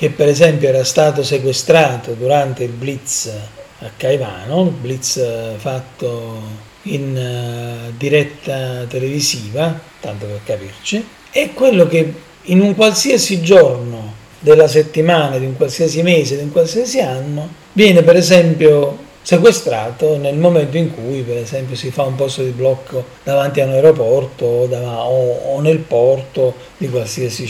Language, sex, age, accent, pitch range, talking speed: Italian, male, 40-59, native, 130-165 Hz, 135 wpm